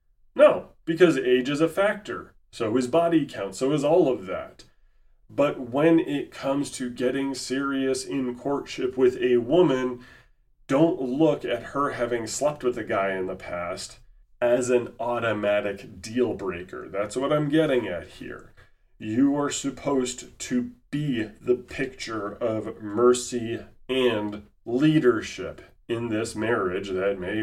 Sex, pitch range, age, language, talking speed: male, 110-135 Hz, 30-49, English, 145 wpm